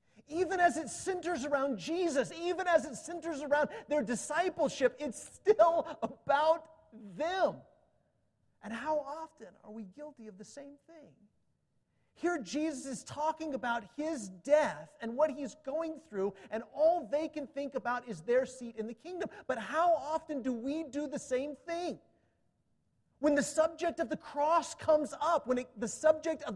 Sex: male